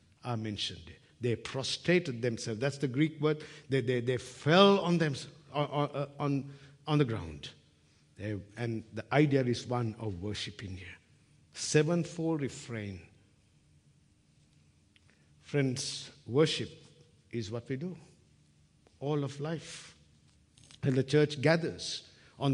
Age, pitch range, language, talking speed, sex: 60-79, 115-155 Hz, English, 115 wpm, male